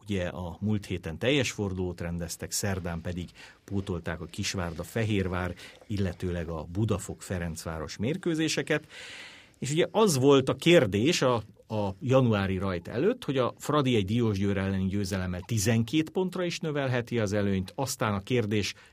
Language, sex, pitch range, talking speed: Hungarian, male, 90-120 Hz, 135 wpm